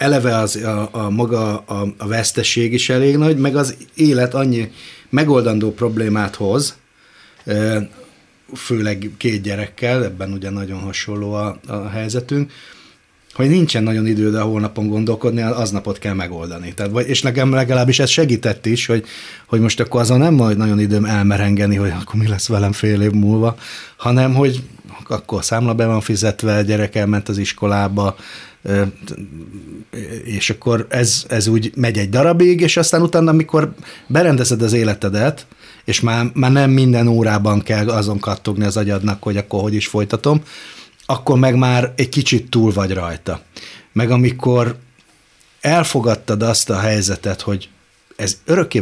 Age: 30-49